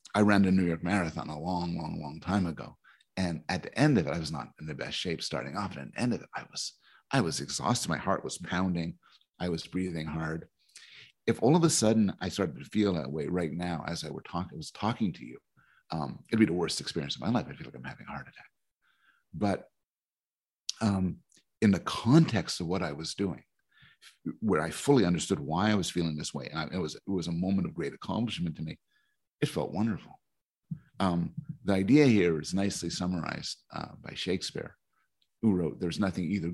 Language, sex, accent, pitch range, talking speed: English, male, American, 85-125 Hz, 225 wpm